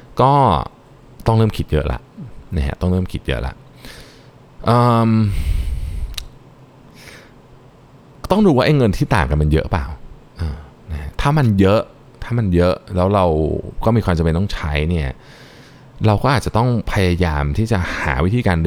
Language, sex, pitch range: Thai, male, 75-110 Hz